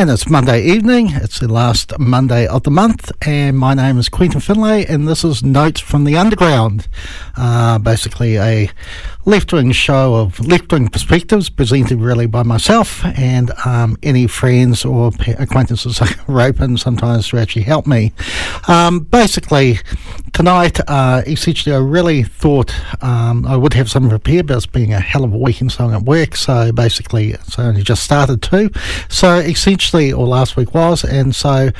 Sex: male